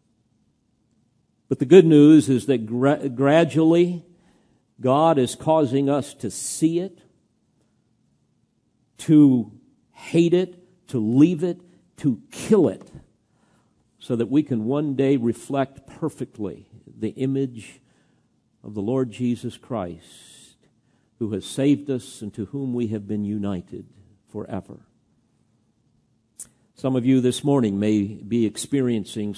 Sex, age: male, 50-69